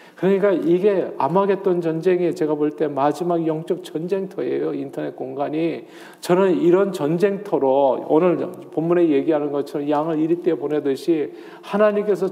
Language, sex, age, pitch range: Korean, male, 40-59, 130-175 Hz